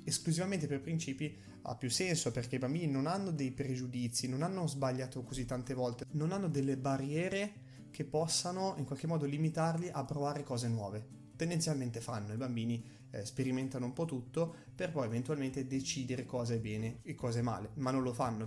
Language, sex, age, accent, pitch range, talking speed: Italian, male, 20-39, native, 125-160 Hz, 185 wpm